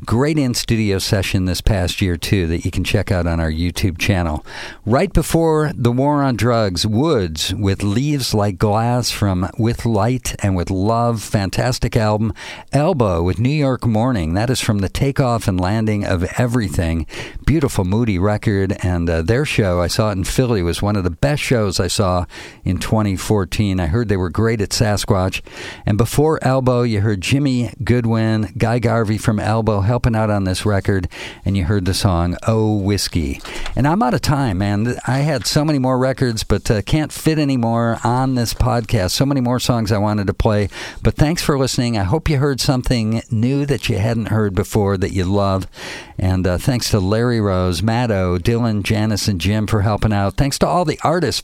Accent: American